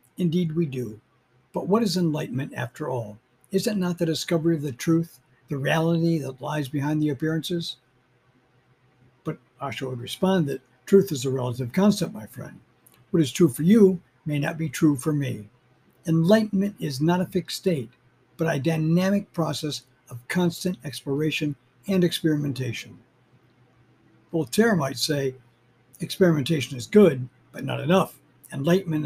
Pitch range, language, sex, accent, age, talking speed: 125-170 Hz, English, male, American, 60-79, 150 wpm